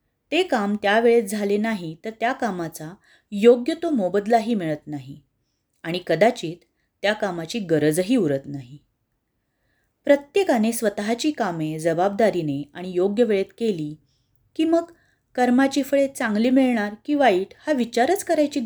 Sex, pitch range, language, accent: female, 155-240 Hz, Marathi, native